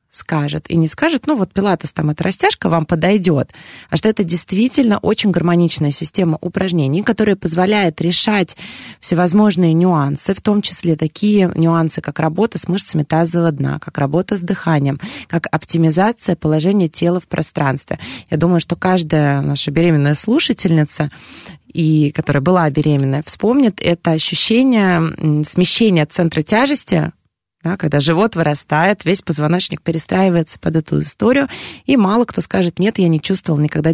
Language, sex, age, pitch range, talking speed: Russian, female, 20-39, 155-200 Hz, 145 wpm